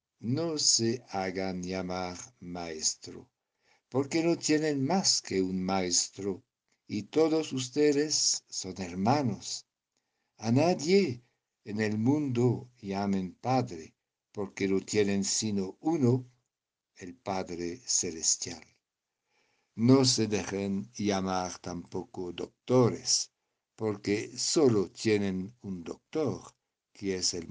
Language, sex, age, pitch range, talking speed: Spanish, male, 60-79, 90-125 Hz, 100 wpm